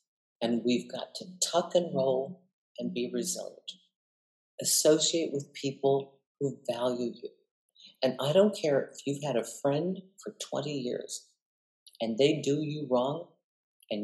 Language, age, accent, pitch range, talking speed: English, 50-69, American, 130-175 Hz, 145 wpm